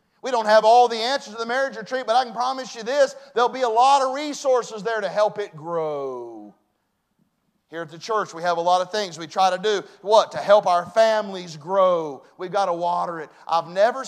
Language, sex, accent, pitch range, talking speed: English, male, American, 165-220 Hz, 230 wpm